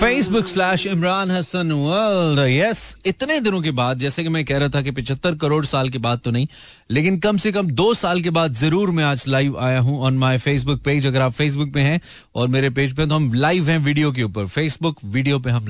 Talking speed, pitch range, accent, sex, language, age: 255 wpm, 120-150 Hz, native, male, Hindi, 30-49